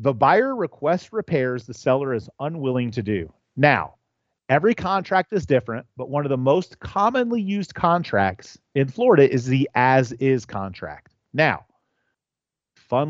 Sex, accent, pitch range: male, American, 125-175 Hz